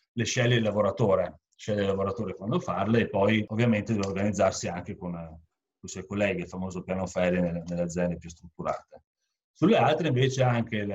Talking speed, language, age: 170 wpm, Italian, 40-59